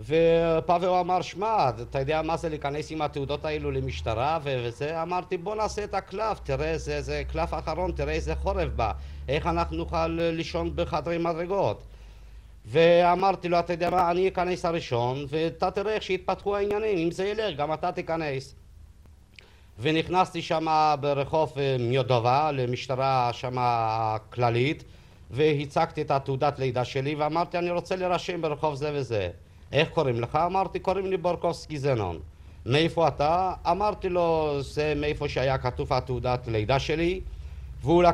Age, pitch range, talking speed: 50-69, 130-175 Hz, 145 wpm